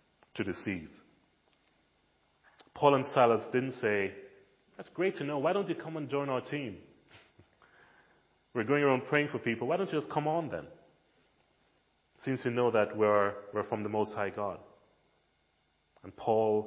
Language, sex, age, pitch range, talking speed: English, male, 30-49, 90-125 Hz, 165 wpm